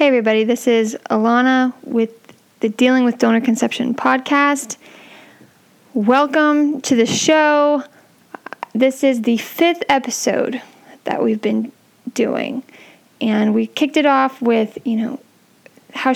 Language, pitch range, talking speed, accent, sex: English, 225-265 Hz, 125 wpm, American, female